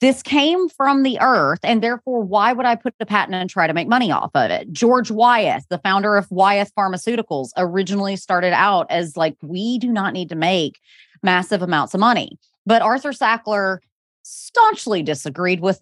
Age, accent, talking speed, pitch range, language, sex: 30-49, American, 185 wpm, 180-240 Hz, English, female